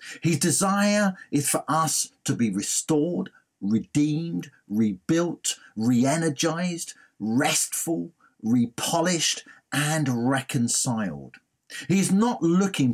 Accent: British